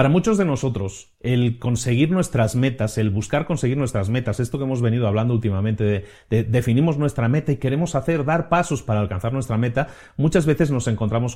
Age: 40-59